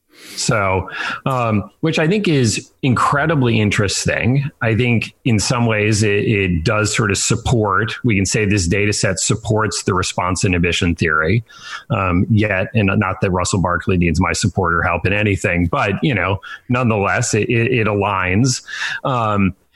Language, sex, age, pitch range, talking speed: English, male, 30-49, 95-125 Hz, 160 wpm